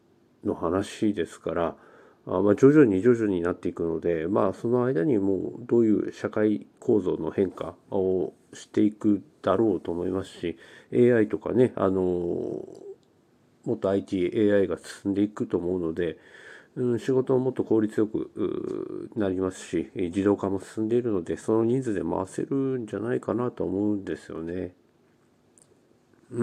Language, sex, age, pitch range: Japanese, male, 50-69, 100-140 Hz